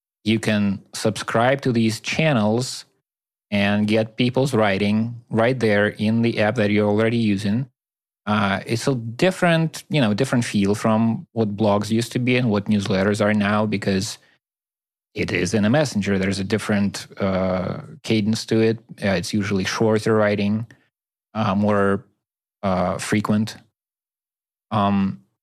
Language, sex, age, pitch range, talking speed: English, male, 30-49, 100-120 Hz, 145 wpm